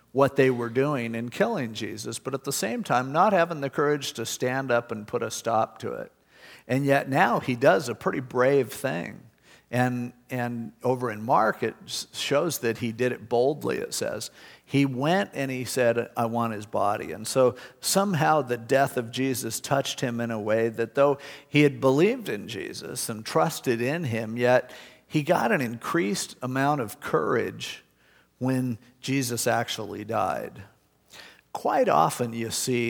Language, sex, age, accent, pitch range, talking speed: English, male, 50-69, American, 115-135 Hz, 175 wpm